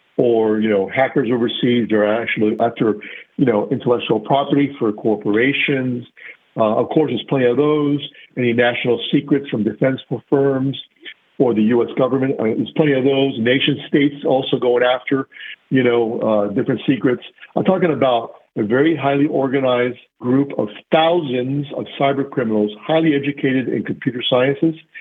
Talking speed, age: 160 wpm, 50-69